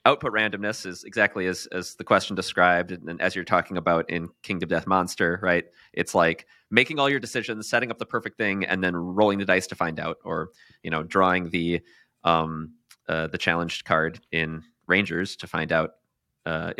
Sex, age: male, 30-49